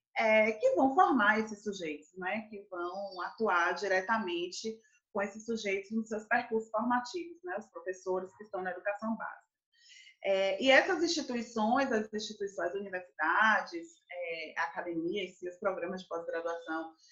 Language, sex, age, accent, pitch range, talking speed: Portuguese, female, 20-39, Brazilian, 195-275 Hz, 145 wpm